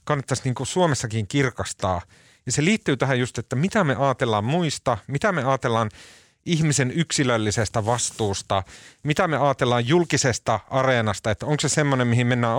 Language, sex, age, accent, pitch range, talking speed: Finnish, male, 30-49, native, 110-150 Hz, 155 wpm